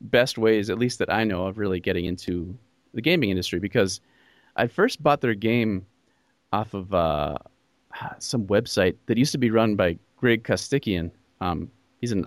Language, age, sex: English, 30-49, male